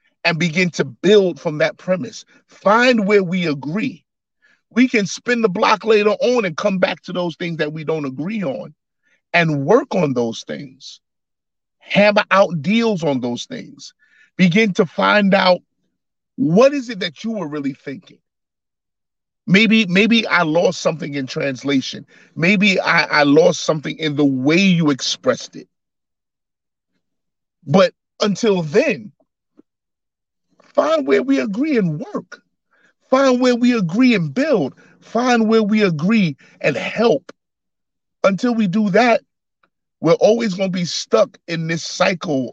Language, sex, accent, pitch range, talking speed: English, male, American, 165-230 Hz, 145 wpm